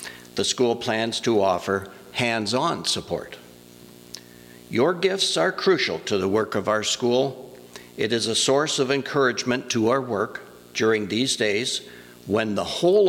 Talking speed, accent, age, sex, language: 145 wpm, American, 60-79, male, English